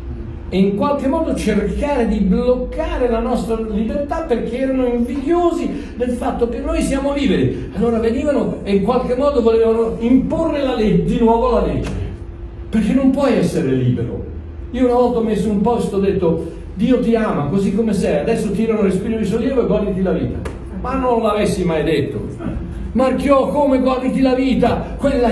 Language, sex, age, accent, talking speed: Italian, male, 60-79, native, 180 wpm